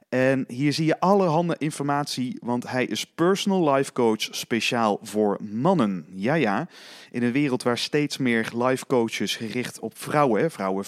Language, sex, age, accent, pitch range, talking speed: Dutch, male, 30-49, Dutch, 110-155 Hz, 160 wpm